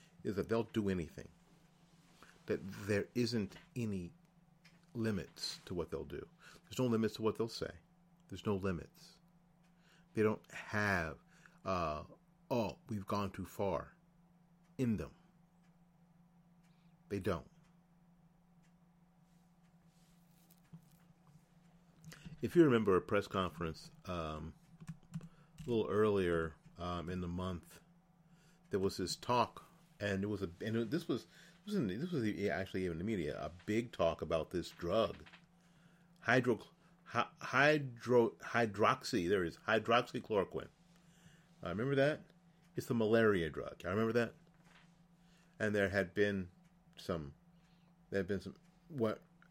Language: English